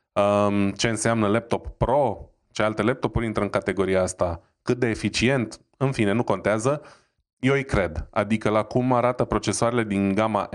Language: Romanian